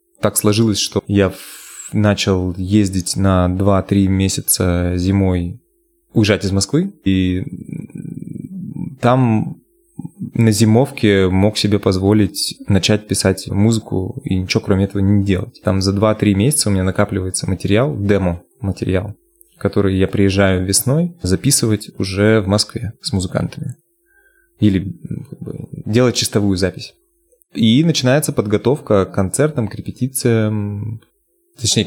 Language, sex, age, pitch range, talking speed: Russian, male, 20-39, 95-120 Hz, 115 wpm